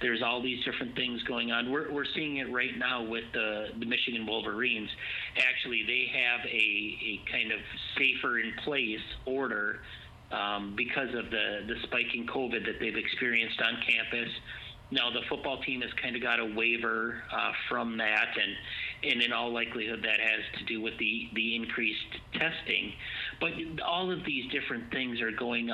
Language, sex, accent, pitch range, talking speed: English, male, American, 115-130 Hz, 180 wpm